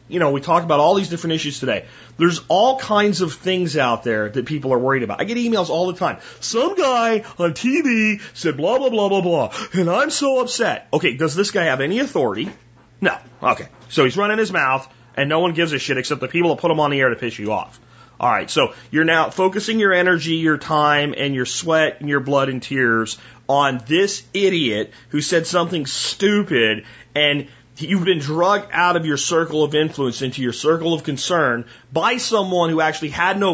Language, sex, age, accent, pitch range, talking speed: English, male, 30-49, American, 125-175 Hz, 215 wpm